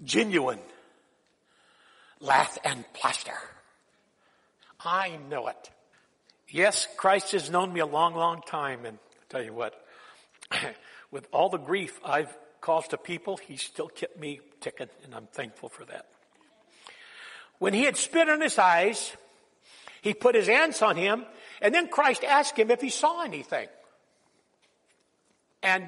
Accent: American